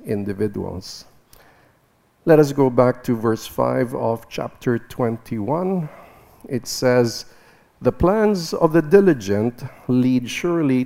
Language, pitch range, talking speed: English, 115-160 Hz, 110 wpm